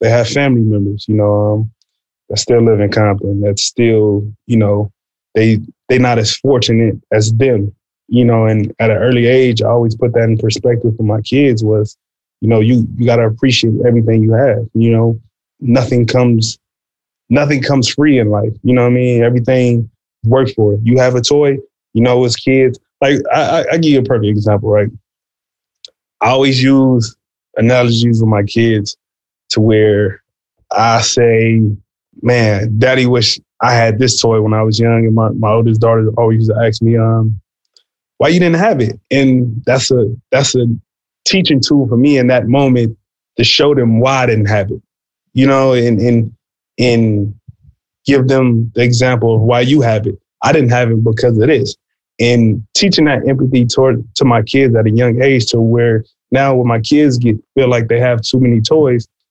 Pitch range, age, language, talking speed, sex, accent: 110-125 Hz, 20-39, English, 195 wpm, male, American